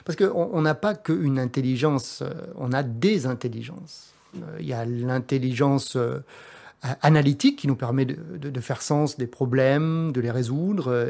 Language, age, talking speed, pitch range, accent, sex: French, 30-49, 140 wpm, 130-165 Hz, French, male